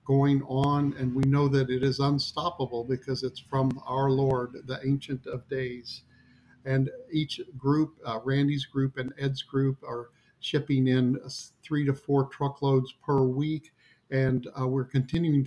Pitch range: 130-145 Hz